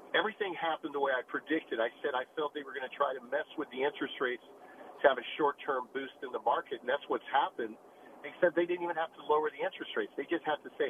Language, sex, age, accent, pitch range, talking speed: English, male, 50-69, American, 140-165 Hz, 270 wpm